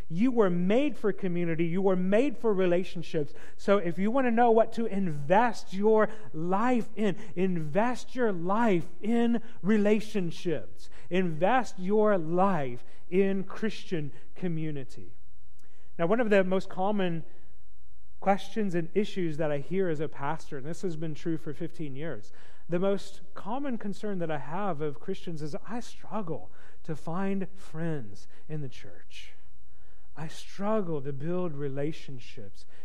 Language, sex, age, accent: English, male, 40-59, American